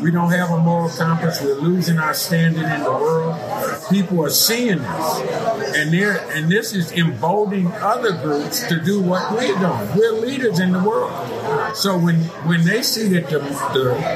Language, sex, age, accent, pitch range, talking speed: English, male, 50-69, American, 165-195 Hz, 180 wpm